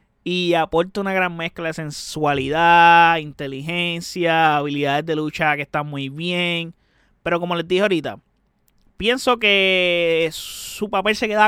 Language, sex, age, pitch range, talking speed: Spanish, male, 20-39, 160-195 Hz, 135 wpm